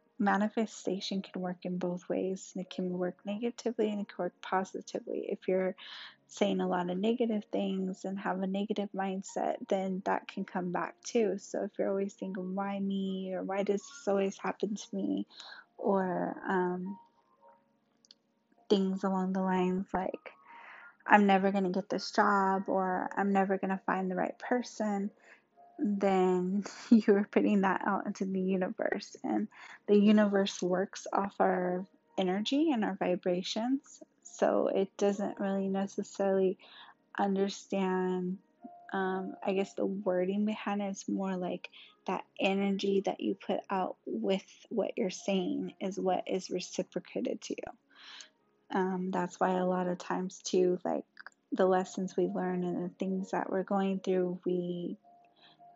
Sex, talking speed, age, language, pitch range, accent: female, 150 wpm, 10-29, English, 185-205 Hz, American